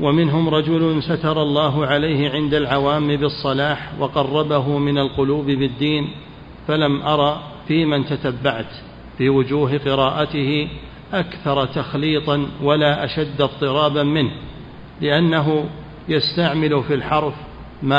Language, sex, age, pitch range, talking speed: Arabic, male, 40-59, 140-155 Hz, 105 wpm